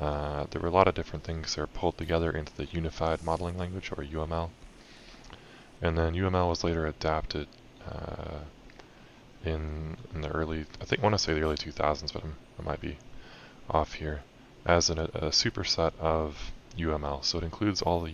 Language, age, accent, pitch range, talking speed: English, 20-39, American, 75-85 Hz, 190 wpm